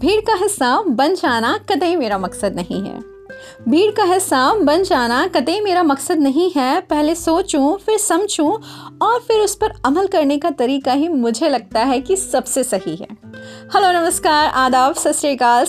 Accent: native